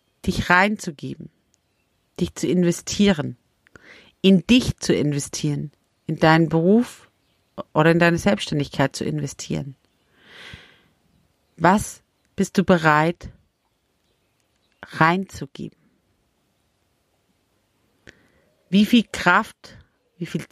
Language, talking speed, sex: German, 80 wpm, female